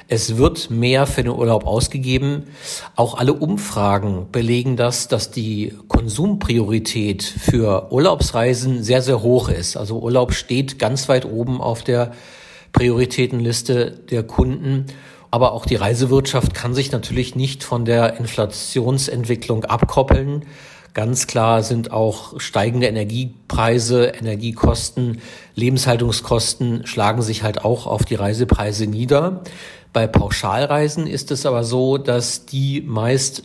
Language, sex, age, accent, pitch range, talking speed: German, male, 50-69, German, 110-130 Hz, 125 wpm